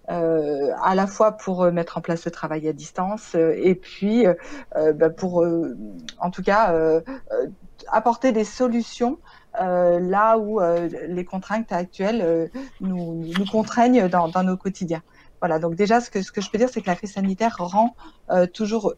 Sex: female